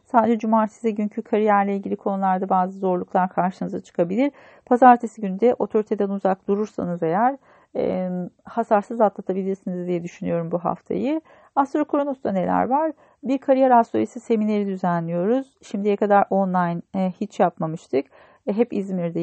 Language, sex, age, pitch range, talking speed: Turkish, female, 40-59, 180-230 Hz, 130 wpm